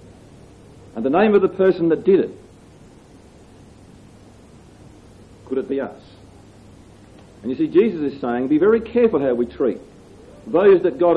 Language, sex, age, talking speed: English, male, 50-69, 150 wpm